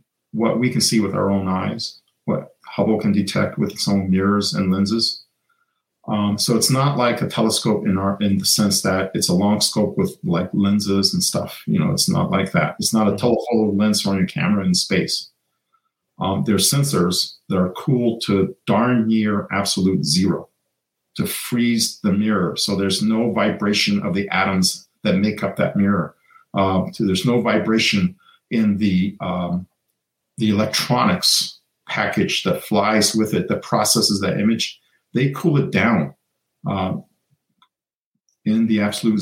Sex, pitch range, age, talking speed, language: male, 100-140 Hz, 50-69, 170 wpm, English